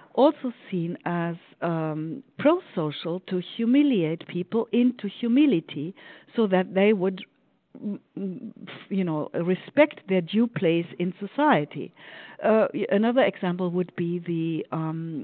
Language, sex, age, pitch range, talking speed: English, female, 50-69, 170-220 Hz, 115 wpm